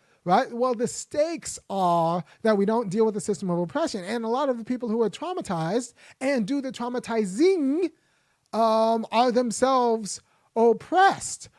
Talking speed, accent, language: 160 wpm, American, English